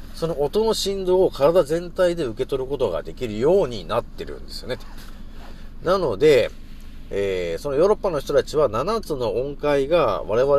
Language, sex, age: Japanese, male, 40-59